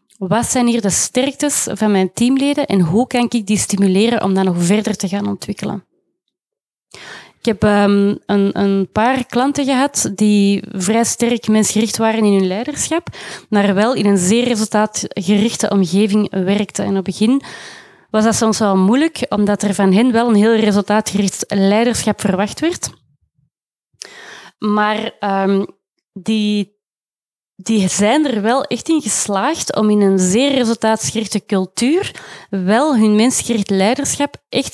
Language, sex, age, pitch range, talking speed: Dutch, female, 20-39, 195-240 Hz, 145 wpm